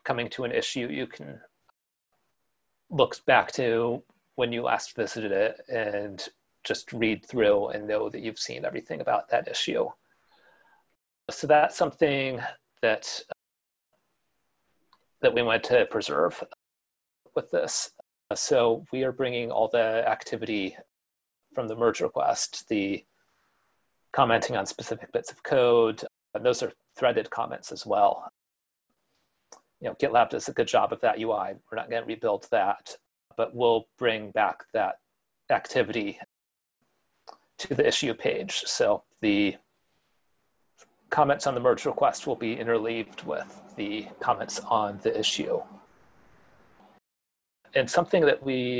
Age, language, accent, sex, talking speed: 30-49, English, American, male, 135 wpm